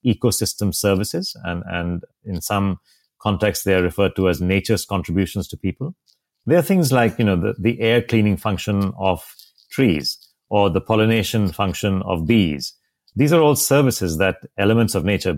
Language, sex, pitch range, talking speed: English, male, 90-115 Hz, 170 wpm